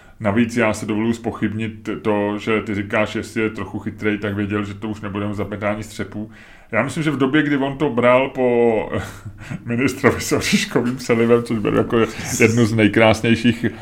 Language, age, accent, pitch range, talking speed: Czech, 30-49, native, 100-115 Hz, 175 wpm